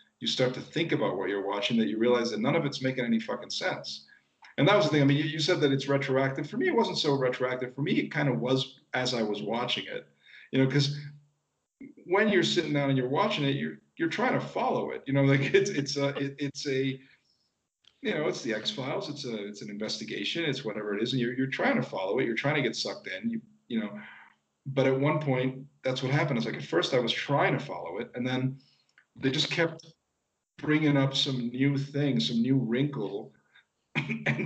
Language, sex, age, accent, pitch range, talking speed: English, male, 40-59, American, 125-150 Hz, 240 wpm